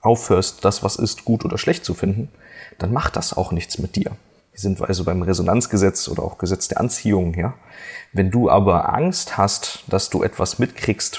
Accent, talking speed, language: German, 205 wpm, German